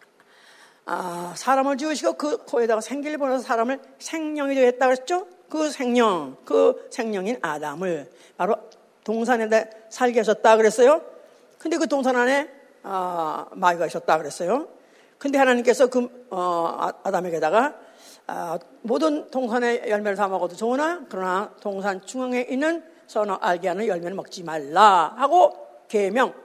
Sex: female